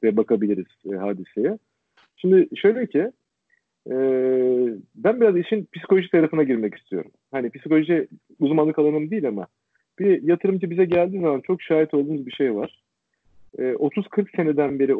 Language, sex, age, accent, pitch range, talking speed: Turkish, male, 40-59, native, 125-175 Hz, 145 wpm